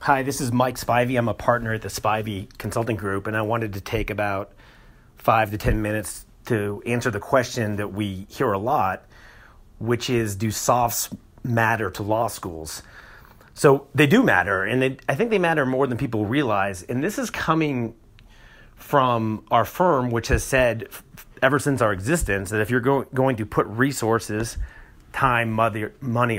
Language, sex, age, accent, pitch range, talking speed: English, male, 40-59, American, 100-125 Hz, 175 wpm